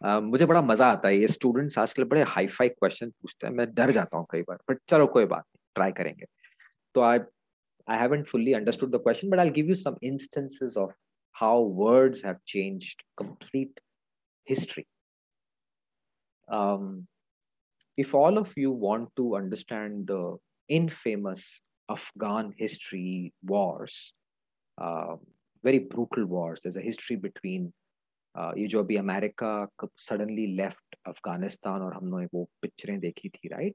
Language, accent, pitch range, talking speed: English, Indian, 95-130 Hz, 110 wpm